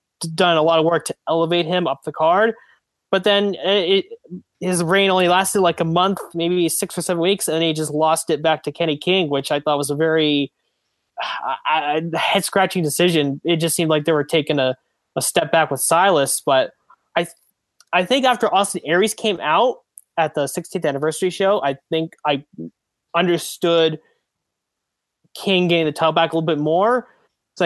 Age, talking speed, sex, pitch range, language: 20-39, 185 wpm, male, 145-175 Hz, English